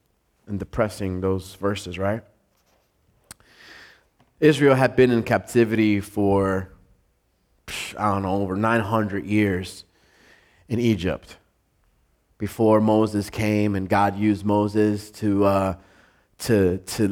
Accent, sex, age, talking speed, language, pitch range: American, male, 30-49, 100 wpm, English, 100-130 Hz